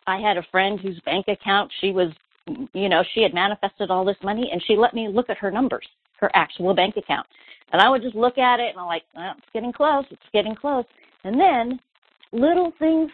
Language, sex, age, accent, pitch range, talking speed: English, female, 40-59, American, 180-230 Hz, 230 wpm